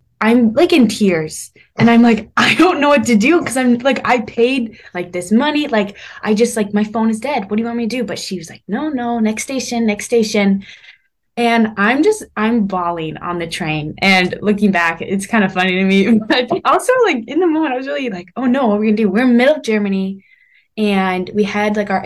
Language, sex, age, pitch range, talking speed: English, female, 20-39, 200-255 Hz, 240 wpm